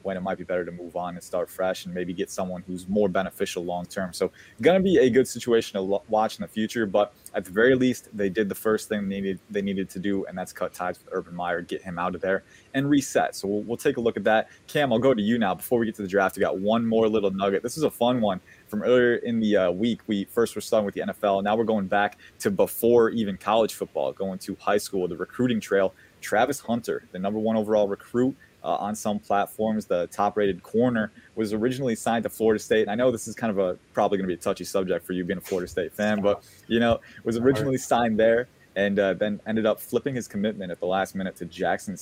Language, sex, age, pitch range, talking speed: English, male, 20-39, 95-115 Hz, 265 wpm